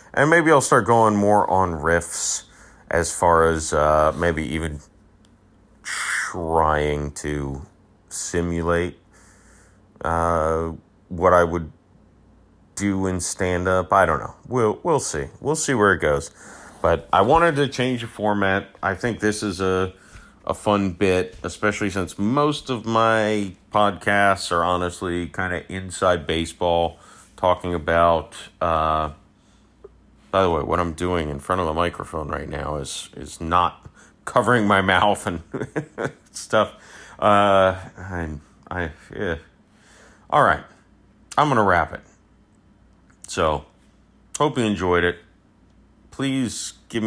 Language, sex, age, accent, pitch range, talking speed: English, male, 30-49, American, 80-105 Hz, 135 wpm